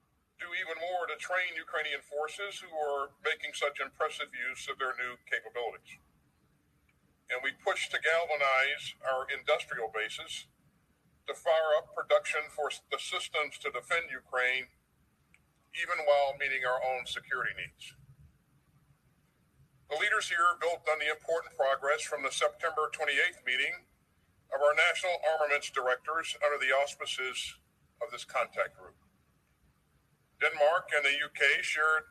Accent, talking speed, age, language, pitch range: American, 135 wpm, 50-69, English, 135-165 Hz